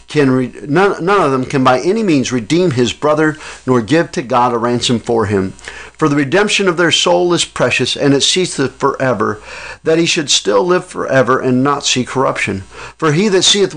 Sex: male